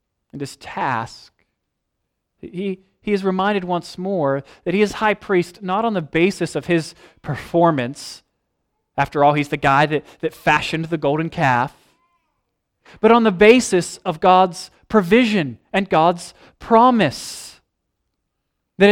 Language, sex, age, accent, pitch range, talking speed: English, male, 20-39, American, 145-205 Hz, 135 wpm